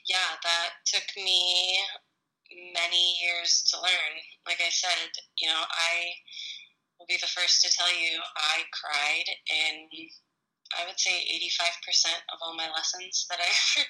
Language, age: English, 20-39